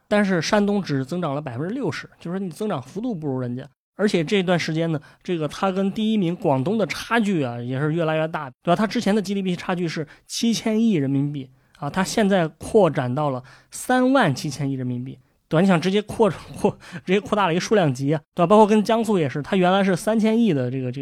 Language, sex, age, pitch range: Chinese, male, 20-39, 145-195 Hz